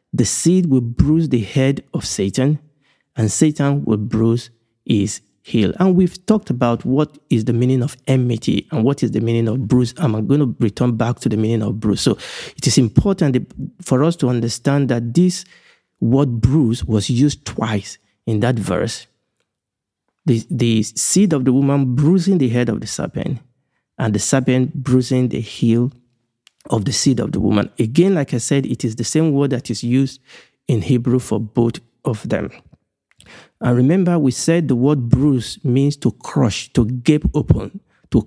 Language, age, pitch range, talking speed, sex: English, 50-69, 120-150 Hz, 180 wpm, male